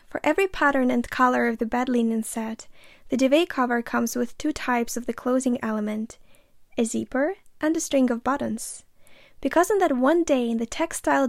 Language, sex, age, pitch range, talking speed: English, female, 10-29, 230-270 Hz, 190 wpm